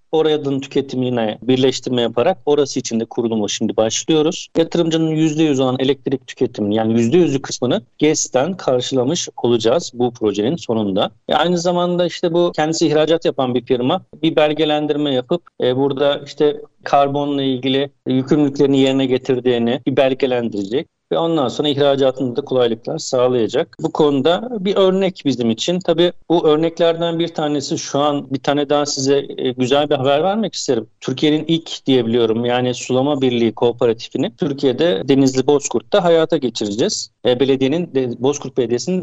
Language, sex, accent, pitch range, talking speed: Turkish, male, native, 125-165 Hz, 140 wpm